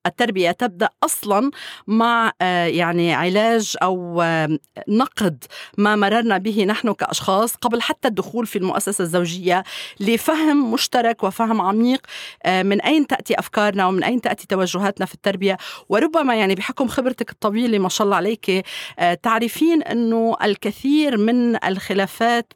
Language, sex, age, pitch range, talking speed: Arabic, female, 40-59, 180-230 Hz, 125 wpm